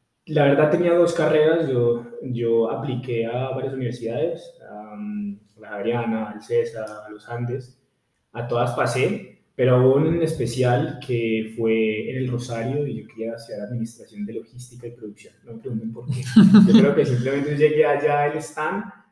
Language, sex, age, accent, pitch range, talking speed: Spanish, male, 20-39, Colombian, 115-140 Hz, 165 wpm